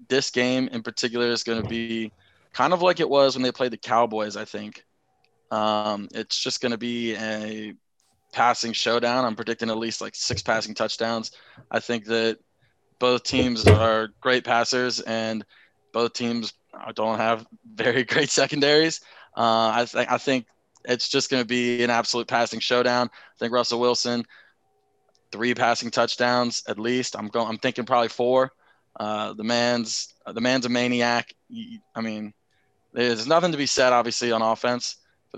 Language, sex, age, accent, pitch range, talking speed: English, male, 20-39, American, 110-125 Hz, 170 wpm